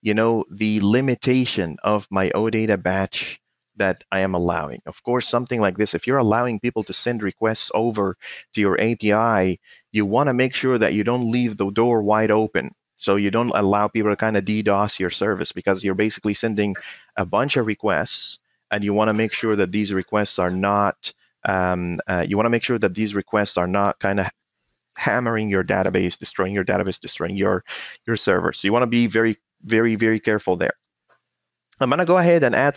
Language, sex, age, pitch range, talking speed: English, male, 30-49, 100-125 Hz, 205 wpm